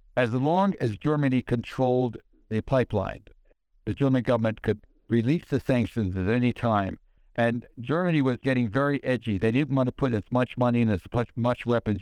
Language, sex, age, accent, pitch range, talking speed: English, male, 60-79, American, 110-130 Hz, 175 wpm